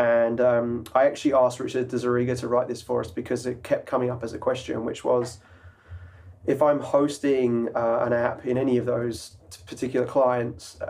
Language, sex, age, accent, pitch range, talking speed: English, male, 20-39, British, 115-130 Hz, 185 wpm